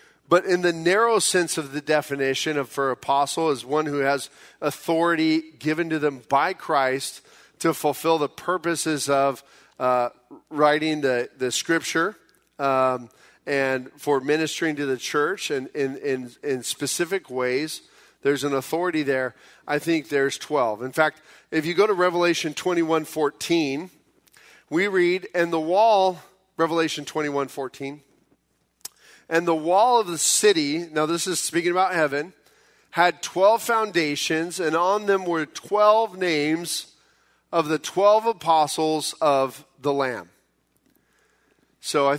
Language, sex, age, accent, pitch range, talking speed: English, male, 40-59, American, 140-170 Hz, 140 wpm